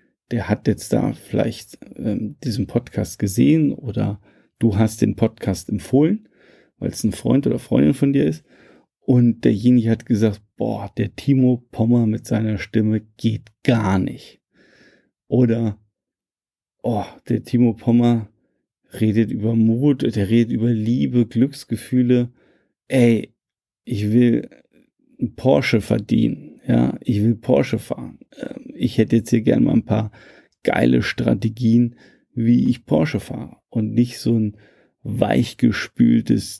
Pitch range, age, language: 110-125 Hz, 40-59, German